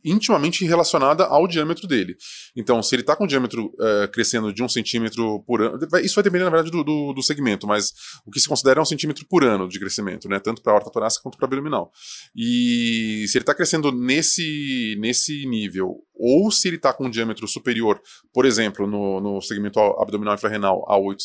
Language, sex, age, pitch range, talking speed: Portuguese, male, 20-39, 110-140 Hz, 210 wpm